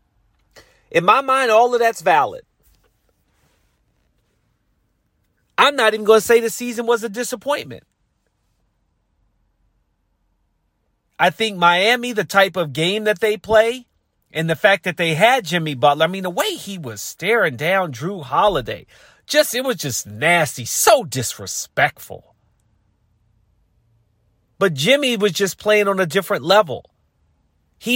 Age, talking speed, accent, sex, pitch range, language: 40-59, 135 wpm, American, male, 115-195 Hz, English